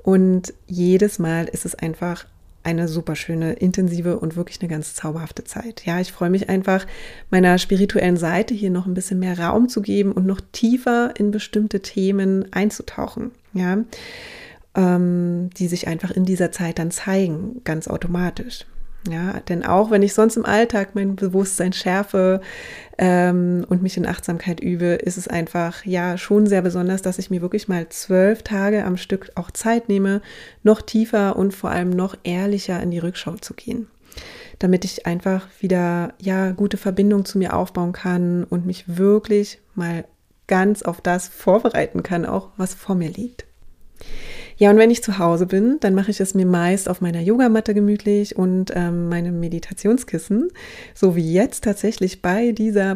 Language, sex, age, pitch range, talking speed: German, female, 30-49, 175-205 Hz, 170 wpm